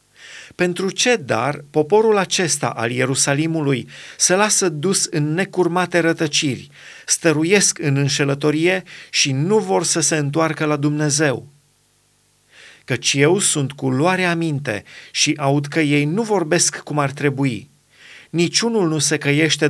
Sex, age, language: male, 30-49, Romanian